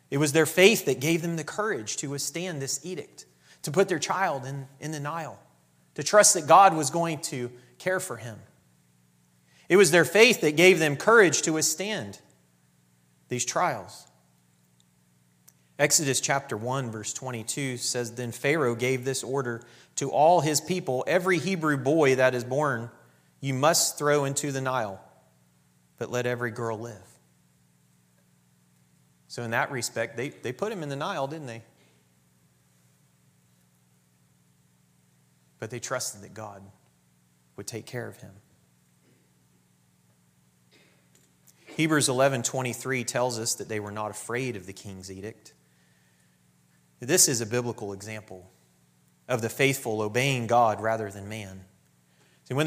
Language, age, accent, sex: English, 30-49, American, male